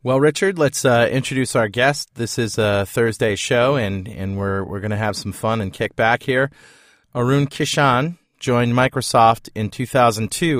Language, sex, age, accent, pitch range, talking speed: English, male, 30-49, American, 110-140 Hz, 175 wpm